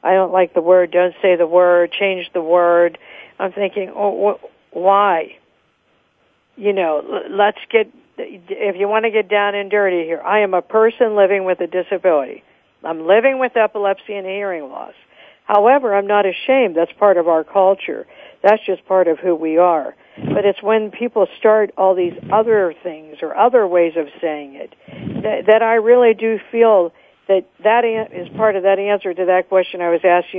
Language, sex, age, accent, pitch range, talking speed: English, female, 60-79, American, 180-225 Hz, 185 wpm